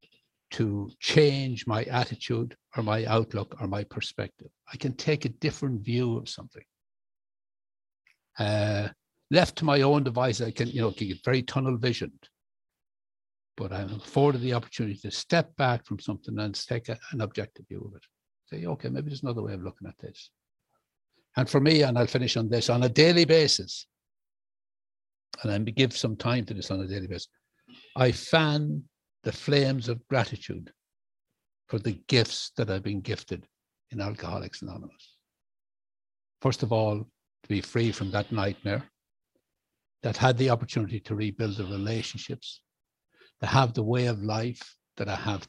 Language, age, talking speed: English, 60-79, 165 wpm